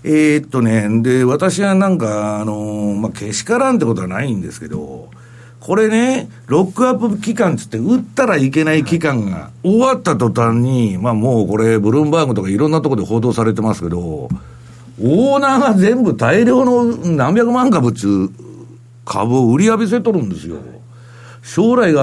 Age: 60-79